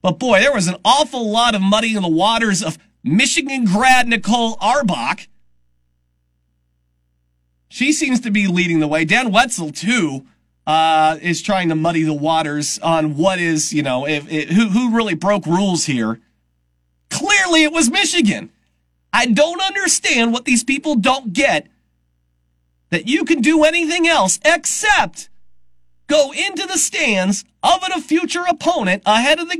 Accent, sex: American, male